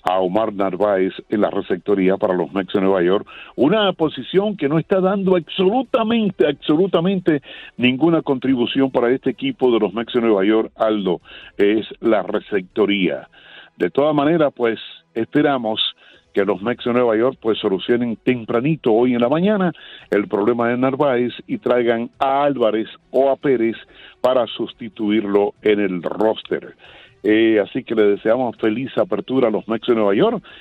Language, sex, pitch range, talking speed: Spanish, male, 105-150 Hz, 160 wpm